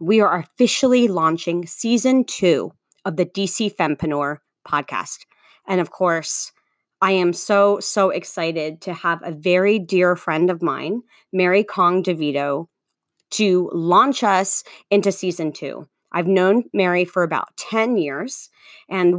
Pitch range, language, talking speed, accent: 175-215 Hz, English, 140 wpm, American